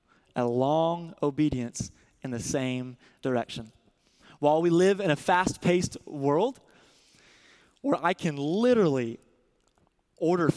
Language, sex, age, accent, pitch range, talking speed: English, male, 20-39, American, 145-180 Hz, 110 wpm